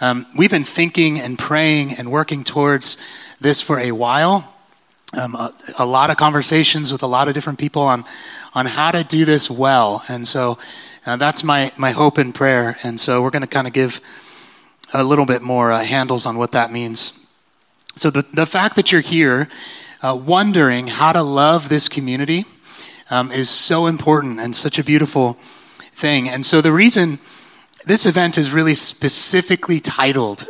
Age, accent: 30-49, American